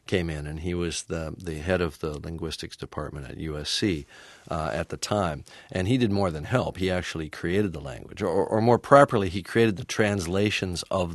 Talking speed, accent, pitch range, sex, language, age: 205 wpm, American, 80-100 Hz, male, English, 50-69